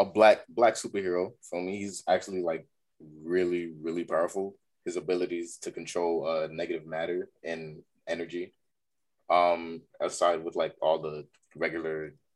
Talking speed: 135 wpm